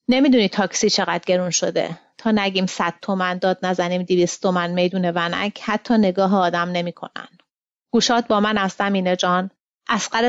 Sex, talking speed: female, 150 wpm